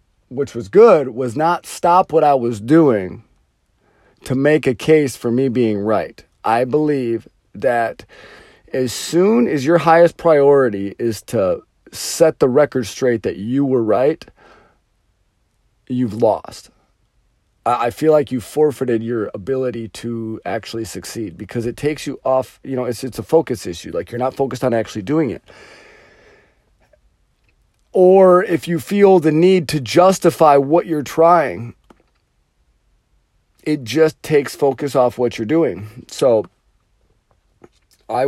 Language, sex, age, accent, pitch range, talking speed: English, male, 40-59, American, 105-150 Hz, 140 wpm